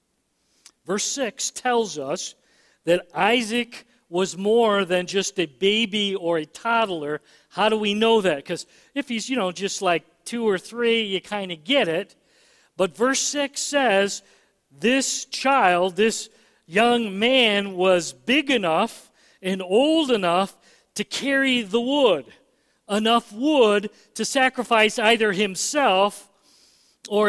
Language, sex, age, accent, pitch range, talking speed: English, male, 50-69, American, 190-235 Hz, 135 wpm